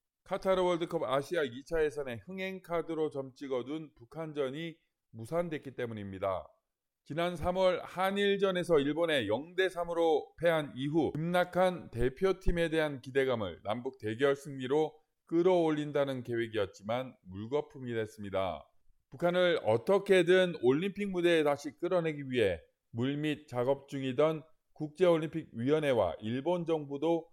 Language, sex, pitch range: Korean, male, 135-170 Hz